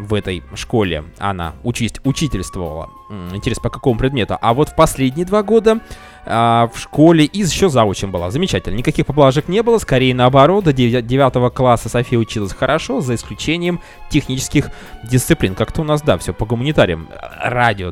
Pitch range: 100-150 Hz